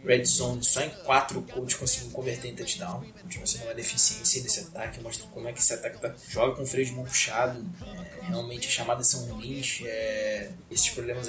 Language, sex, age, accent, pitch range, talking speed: Portuguese, male, 20-39, Brazilian, 115-130 Hz, 220 wpm